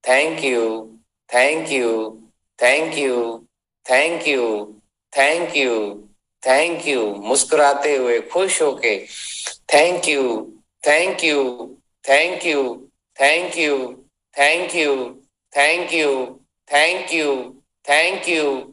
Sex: male